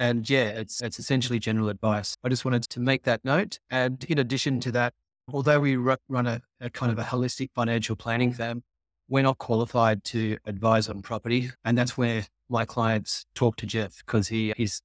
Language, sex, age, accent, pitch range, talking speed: English, male, 30-49, Australian, 110-135 Hz, 200 wpm